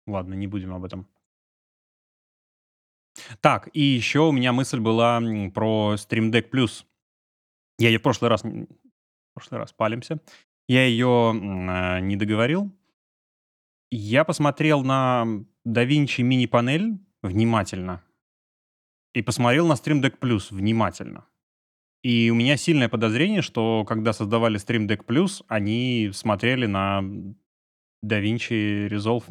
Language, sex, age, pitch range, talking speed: Russian, male, 20-39, 100-125 Hz, 125 wpm